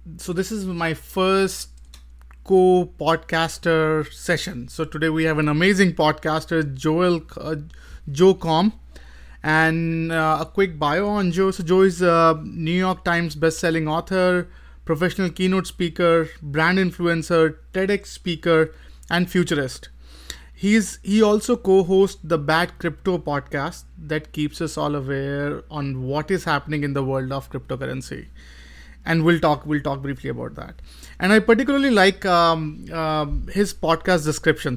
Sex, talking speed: male, 140 wpm